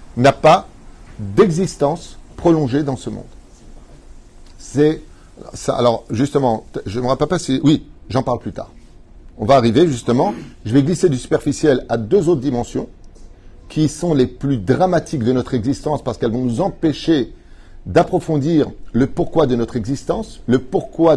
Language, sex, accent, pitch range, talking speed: French, male, French, 130-185 Hz, 160 wpm